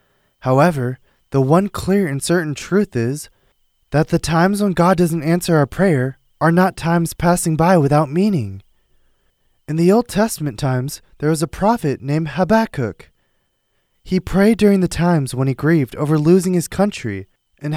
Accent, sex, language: American, male, Korean